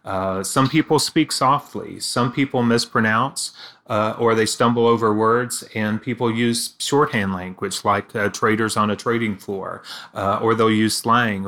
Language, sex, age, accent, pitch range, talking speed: English, male, 30-49, American, 110-125 Hz, 160 wpm